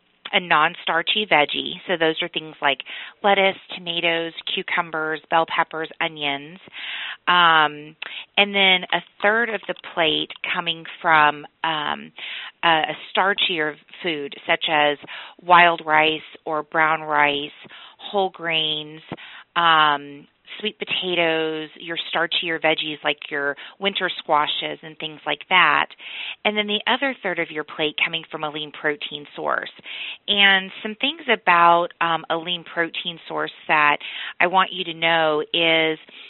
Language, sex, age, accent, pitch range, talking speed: English, female, 30-49, American, 155-190 Hz, 130 wpm